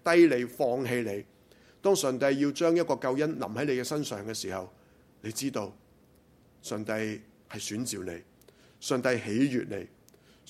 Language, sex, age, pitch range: Chinese, male, 30-49, 105-145 Hz